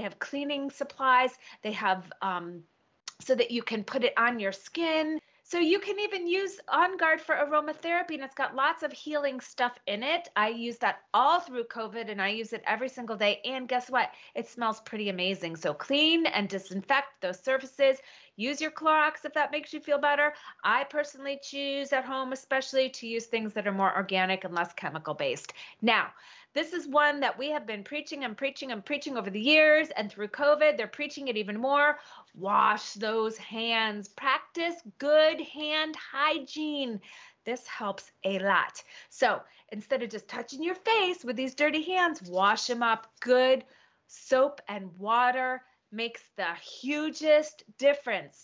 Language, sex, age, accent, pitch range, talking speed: English, female, 30-49, American, 220-300 Hz, 175 wpm